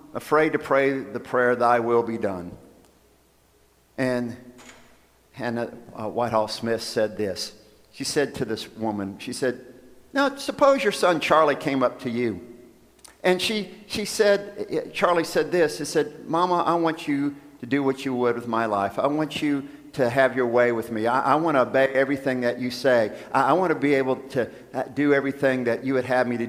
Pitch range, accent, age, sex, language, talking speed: 120-155 Hz, American, 50-69, male, English, 195 wpm